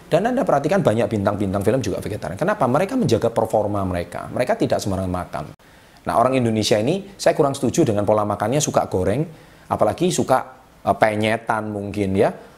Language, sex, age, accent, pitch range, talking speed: Indonesian, male, 30-49, native, 105-145 Hz, 160 wpm